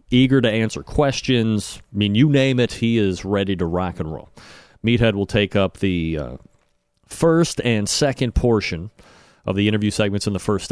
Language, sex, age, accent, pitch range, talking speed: English, male, 30-49, American, 95-130 Hz, 185 wpm